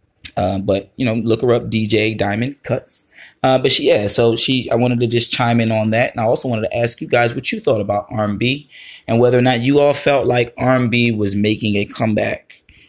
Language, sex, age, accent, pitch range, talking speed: English, male, 20-39, American, 105-125 Hz, 235 wpm